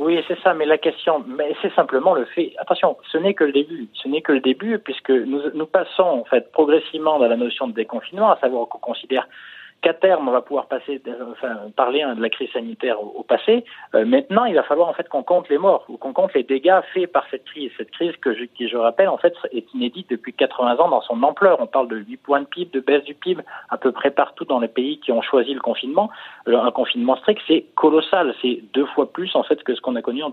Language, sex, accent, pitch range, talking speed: French, male, French, 135-200 Hz, 260 wpm